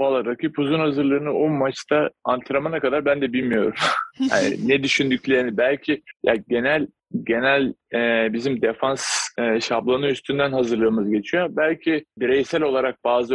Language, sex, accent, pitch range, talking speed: Turkish, male, native, 120-150 Hz, 135 wpm